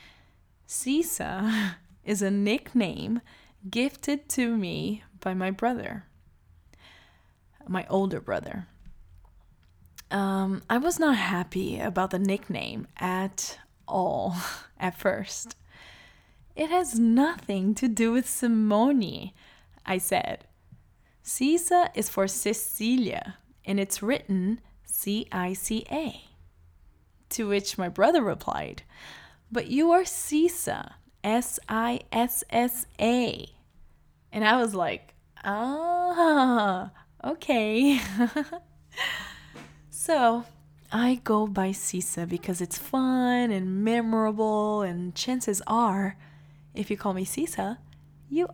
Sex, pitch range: female, 170-240 Hz